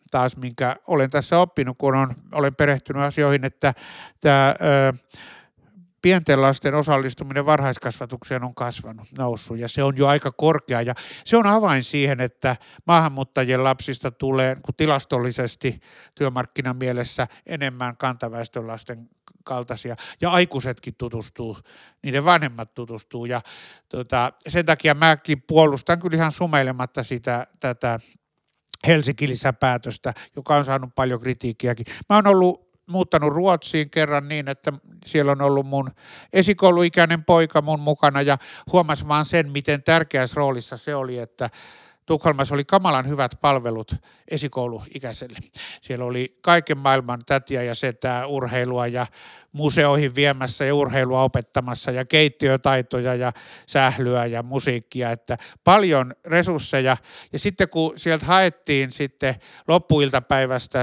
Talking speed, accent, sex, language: 125 wpm, native, male, Finnish